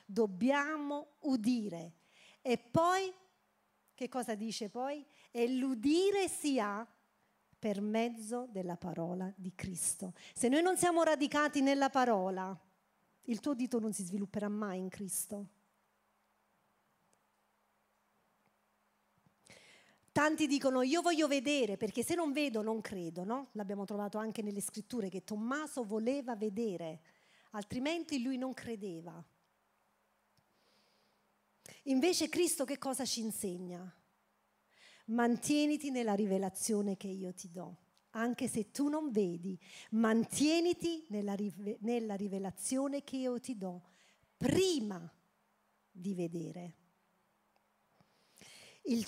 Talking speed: 110 wpm